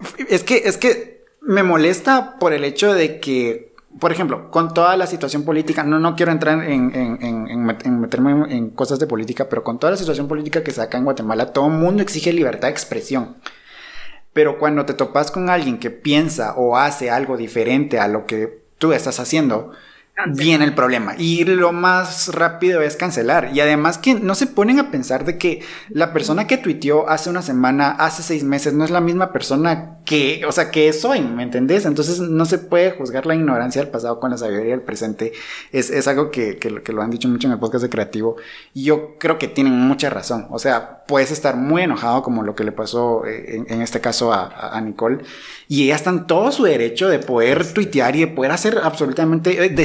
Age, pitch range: 30-49, 125-175 Hz